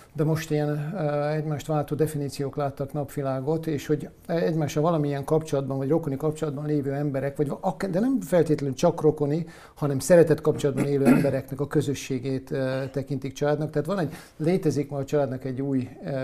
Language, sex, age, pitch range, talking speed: Hungarian, male, 50-69, 135-150 Hz, 160 wpm